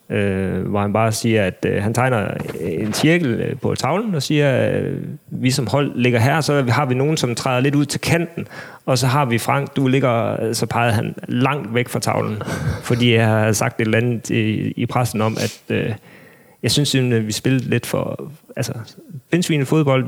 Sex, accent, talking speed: male, native, 215 wpm